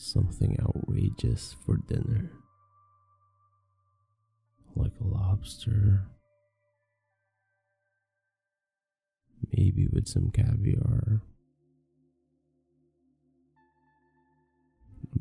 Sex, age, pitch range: male, 30-49, 85-115 Hz